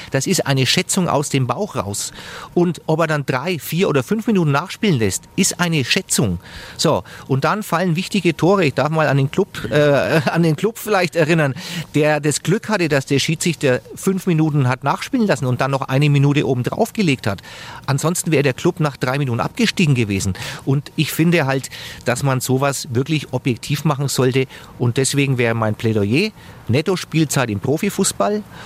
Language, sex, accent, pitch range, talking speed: German, male, German, 125-165 Hz, 190 wpm